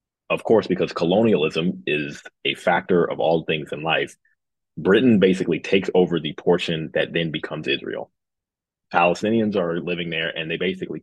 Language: English